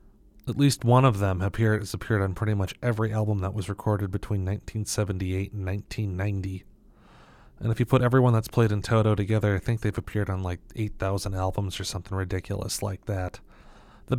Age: 30-49